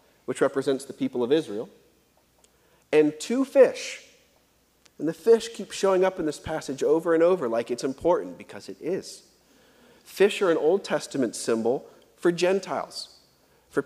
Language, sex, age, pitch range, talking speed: English, male, 40-59, 150-195 Hz, 155 wpm